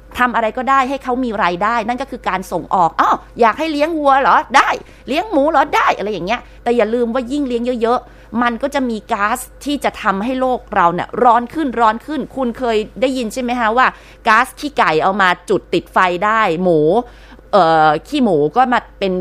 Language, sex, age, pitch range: Thai, female, 20-39, 185-255 Hz